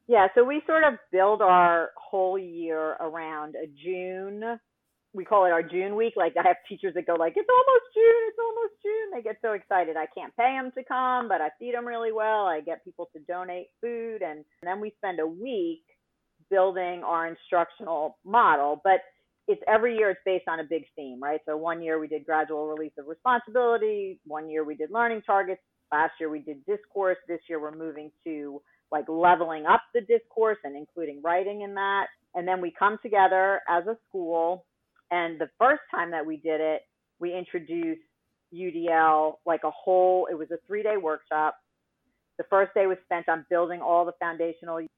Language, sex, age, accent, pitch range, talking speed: English, female, 40-59, American, 165-220 Hz, 195 wpm